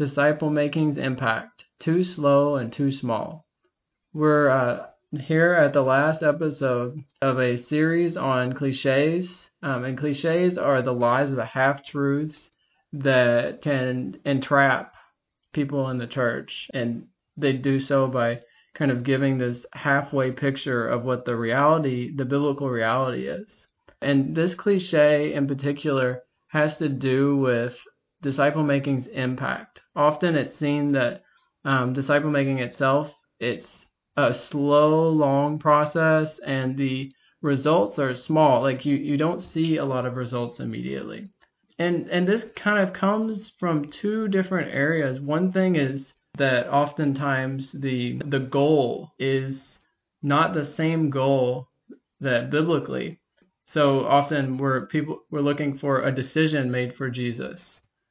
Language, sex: English, male